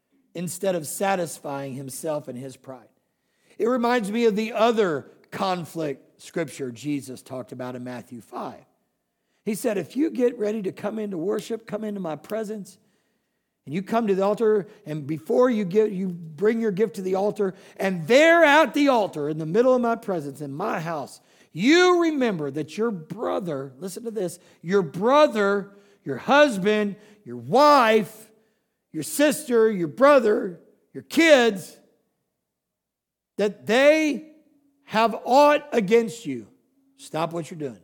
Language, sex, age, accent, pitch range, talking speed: English, male, 50-69, American, 155-230 Hz, 150 wpm